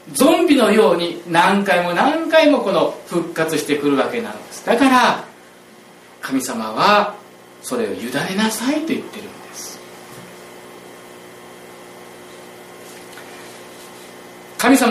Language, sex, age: Japanese, male, 40-59